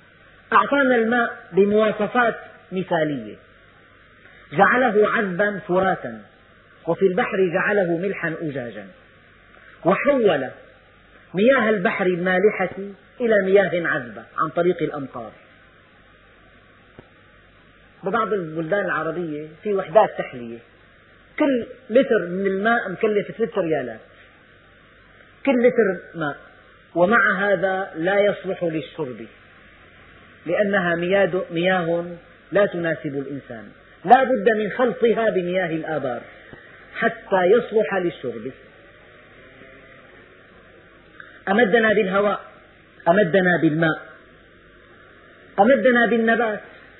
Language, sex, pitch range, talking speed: Arabic, female, 155-210 Hz, 80 wpm